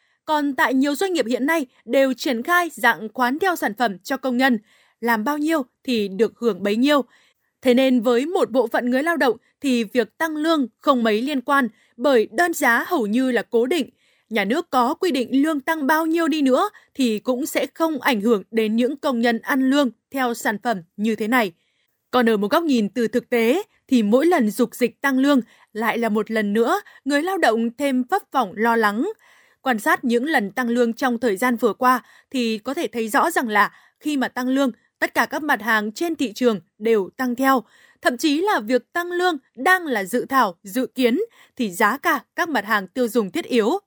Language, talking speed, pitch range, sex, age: Vietnamese, 225 wpm, 235-300 Hz, female, 20-39